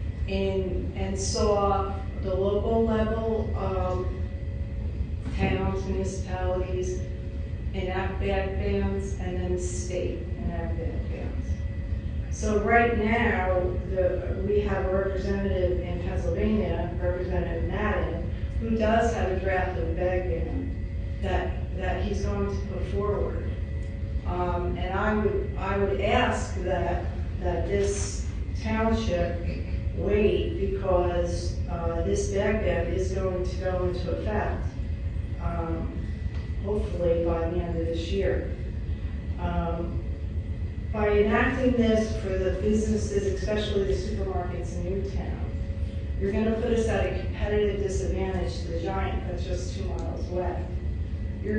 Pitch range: 85-95 Hz